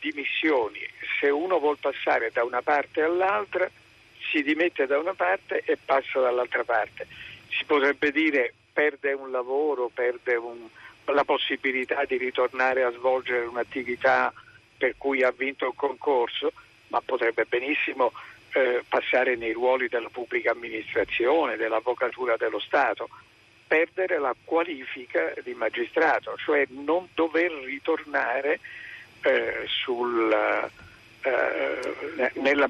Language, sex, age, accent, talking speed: Italian, male, 50-69, native, 115 wpm